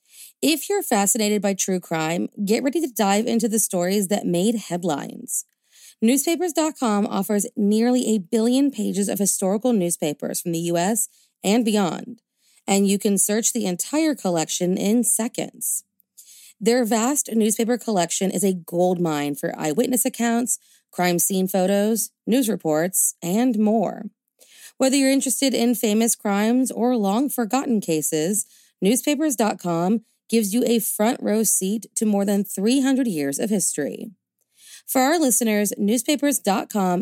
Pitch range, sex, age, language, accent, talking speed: 185-235 Hz, female, 30-49, English, American, 135 wpm